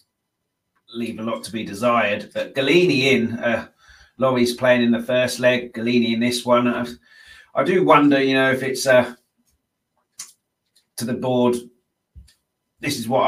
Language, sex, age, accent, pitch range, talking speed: English, male, 30-49, British, 115-130 Hz, 160 wpm